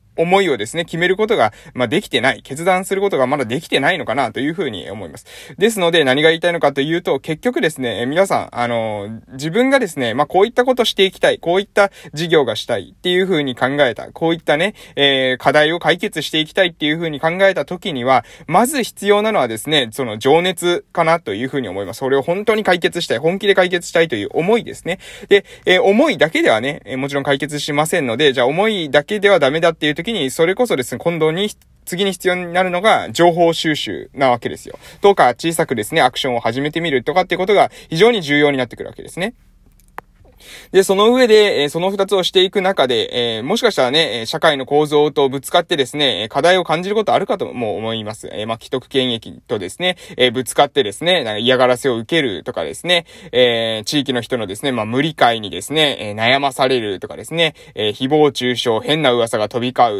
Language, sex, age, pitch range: Japanese, male, 20-39, 130-180 Hz